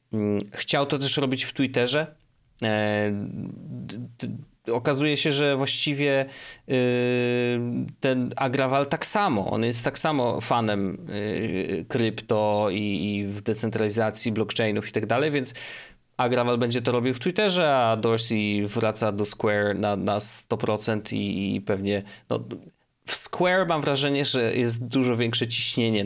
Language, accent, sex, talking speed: Polish, native, male, 125 wpm